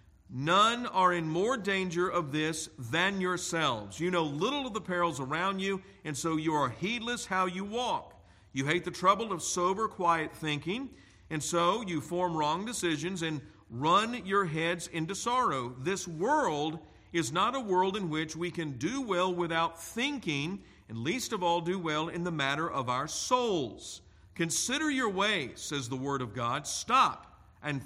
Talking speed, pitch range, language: 175 wpm, 150-195 Hz, English